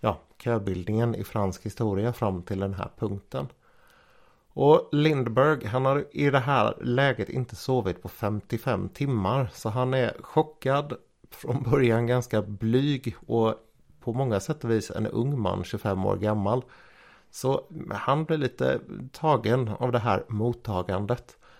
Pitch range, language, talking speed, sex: 105-125 Hz, Swedish, 140 wpm, male